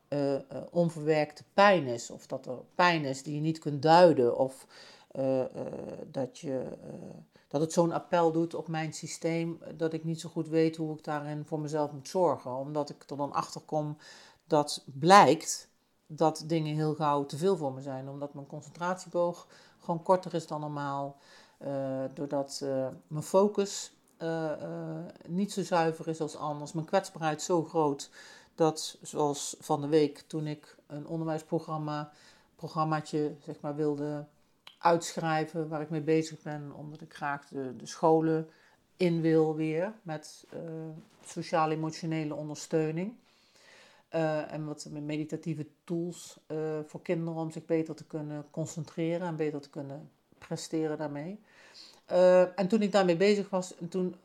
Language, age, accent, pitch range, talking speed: Dutch, 50-69, Dutch, 150-170 Hz, 155 wpm